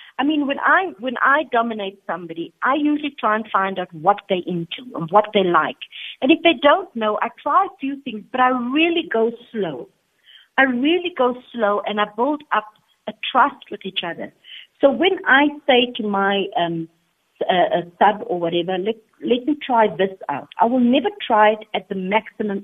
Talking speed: 200 wpm